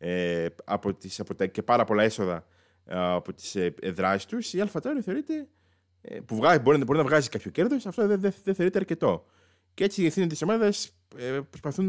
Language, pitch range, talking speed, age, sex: Greek, 95-145 Hz, 145 wpm, 20-39, male